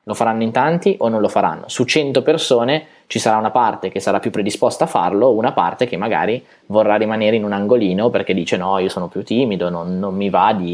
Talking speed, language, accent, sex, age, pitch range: 235 wpm, Italian, native, male, 20-39, 115-155 Hz